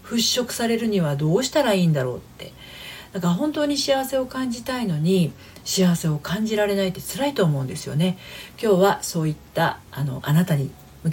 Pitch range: 155-215 Hz